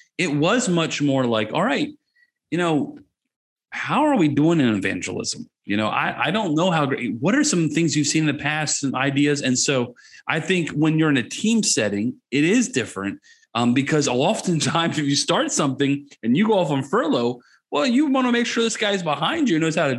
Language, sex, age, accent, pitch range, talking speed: English, male, 30-49, American, 130-180 Hz, 220 wpm